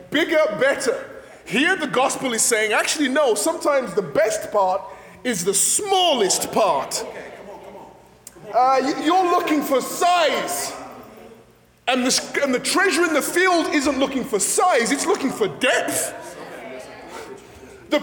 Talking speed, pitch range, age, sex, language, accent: 125 wpm, 245-345 Hz, 20-39, male, English, British